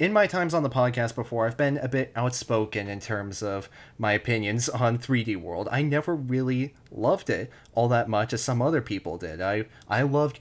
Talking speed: 210 wpm